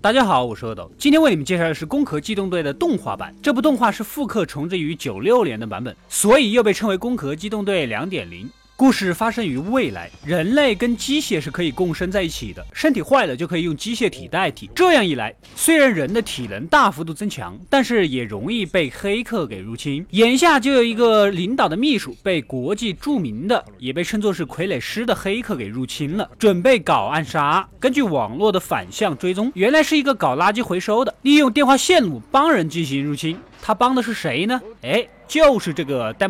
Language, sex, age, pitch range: Chinese, male, 20-39, 165-265 Hz